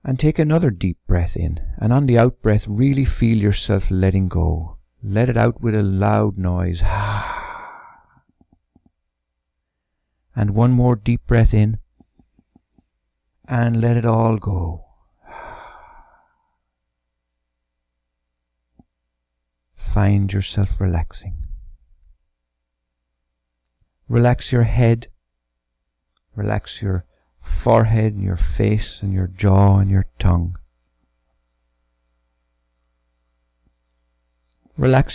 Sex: male